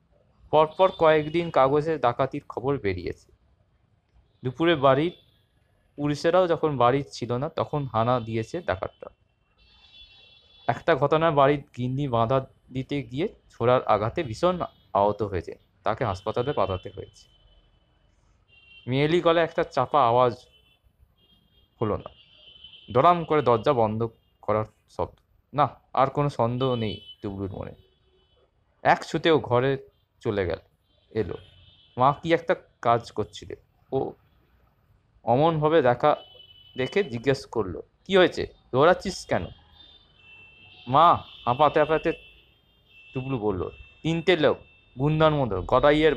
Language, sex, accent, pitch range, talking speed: Bengali, male, native, 100-150 Hz, 110 wpm